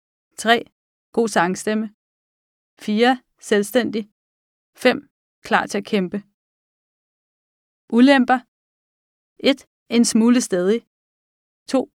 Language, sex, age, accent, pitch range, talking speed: Danish, female, 30-49, native, 195-235 Hz, 80 wpm